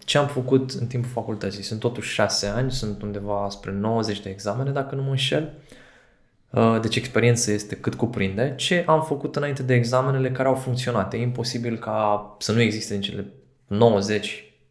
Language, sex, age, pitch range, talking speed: Romanian, male, 20-39, 100-125 Hz, 175 wpm